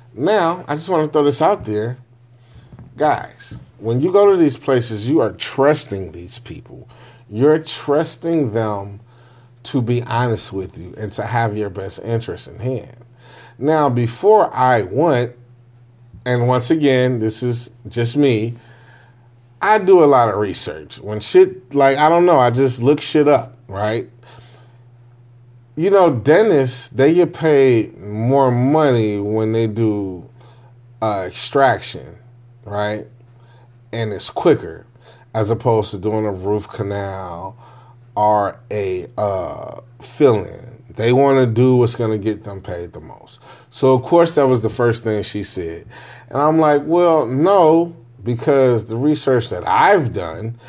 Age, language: 40-59, English